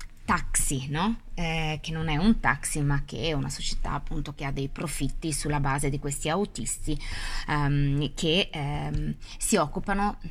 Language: Italian